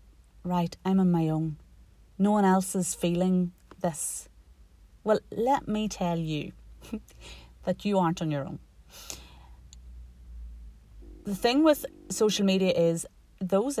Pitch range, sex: 155-185 Hz, female